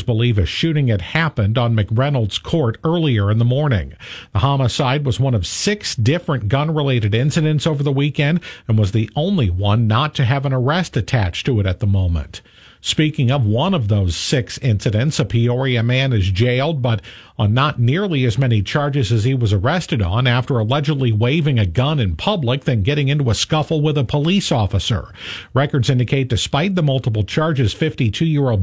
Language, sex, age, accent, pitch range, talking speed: English, male, 50-69, American, 110-145 Hz, 180 wpm